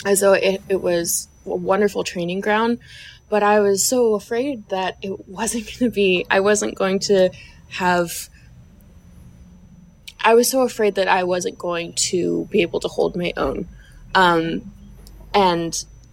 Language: English